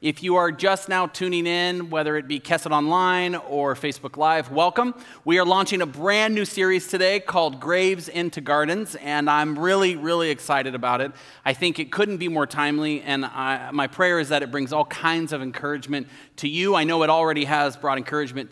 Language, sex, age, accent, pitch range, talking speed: English, male, 30-49, American, 150-190 Hz, 200 wpm